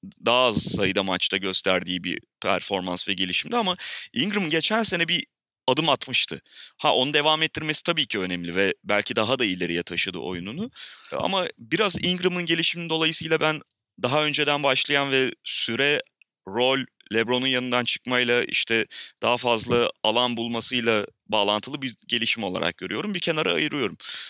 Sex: male